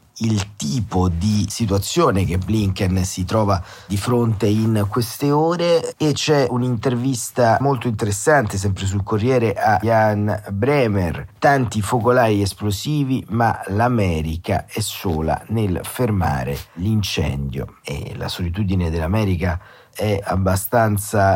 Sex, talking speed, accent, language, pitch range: male, 110 wpm, native, Italian, 95-120 Hz